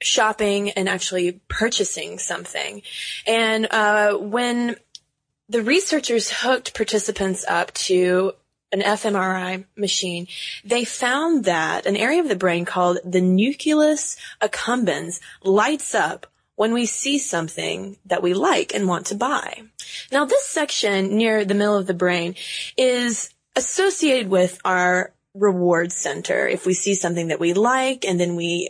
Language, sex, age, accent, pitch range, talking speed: English, female, 20-39, American, 180-230 Hz, 140 wpm